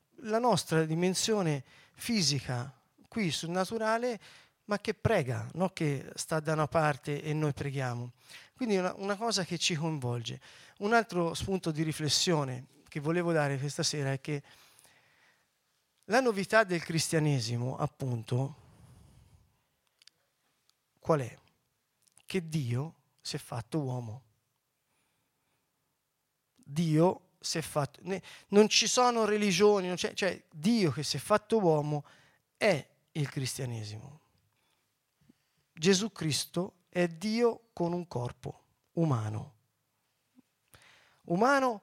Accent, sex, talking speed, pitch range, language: native, male, 110 wpm, 140-195 Hz, Italian